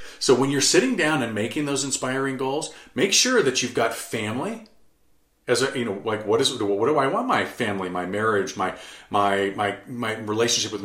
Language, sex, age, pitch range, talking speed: English, male, 40-59, 100-140 Hz, 205 wpm